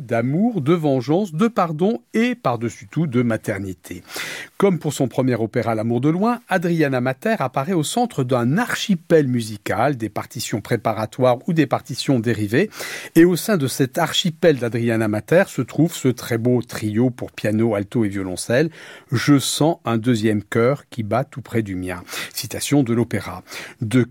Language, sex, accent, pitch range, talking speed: French, male, French, 115-165 Hz, 165 wpm